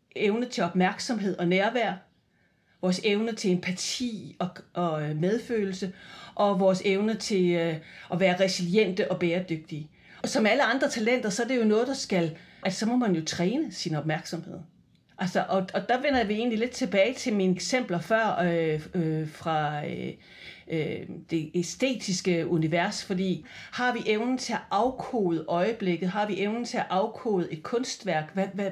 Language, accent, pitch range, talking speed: Danish, native, 175-230 Hz, 160 wpm